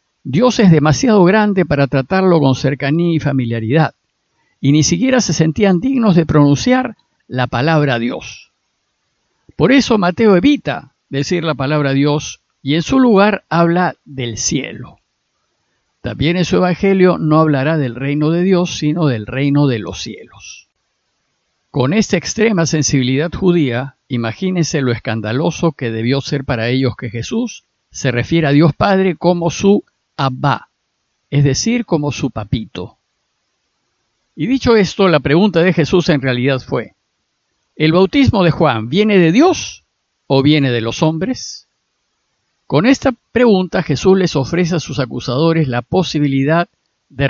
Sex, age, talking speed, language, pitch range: male, 50-69, 145 wpm, Spanish, 135-180 Hz